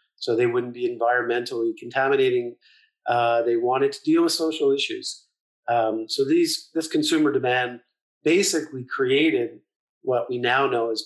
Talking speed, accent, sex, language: 140 wpm, American, male, English